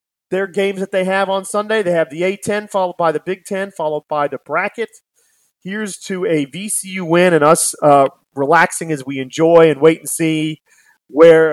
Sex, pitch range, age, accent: male, 140-180 Hz, 40-59, American